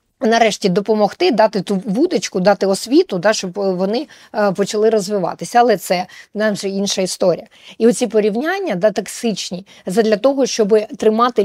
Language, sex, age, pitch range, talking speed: Ukrainian, female, 20-39, 185-220 Hz, 140 wpm